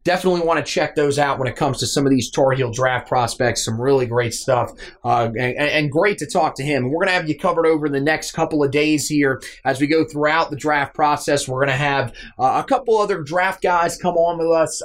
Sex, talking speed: male, 255 wpm